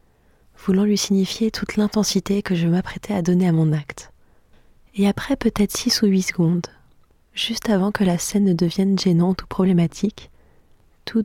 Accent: French